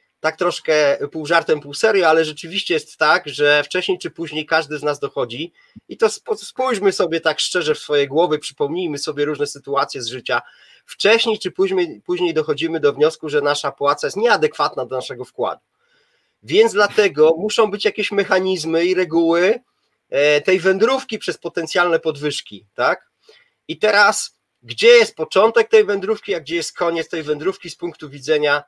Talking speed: 160 wpm